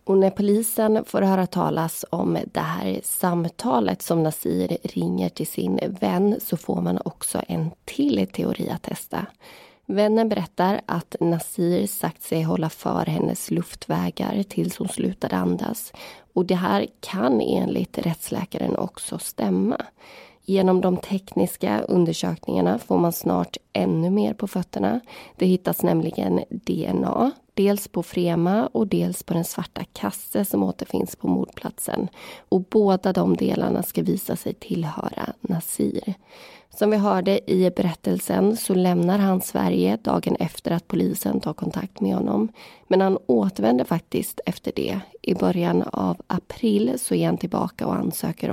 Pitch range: 160-200 Hz